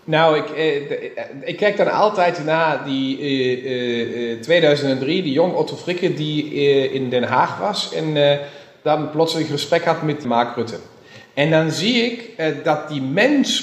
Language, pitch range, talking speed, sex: Dutch, 135-175 Hz, 170 wpm, male